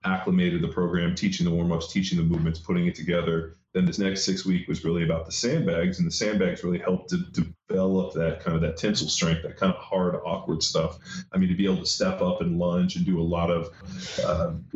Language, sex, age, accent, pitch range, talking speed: English, male, 30-49, American, 90-135 Hz, 230 wpm